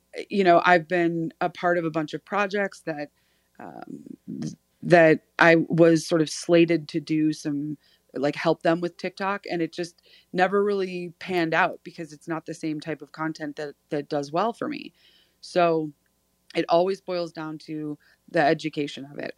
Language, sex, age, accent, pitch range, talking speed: English, female, 30-49, American, 155-175 Hz, 180 wpm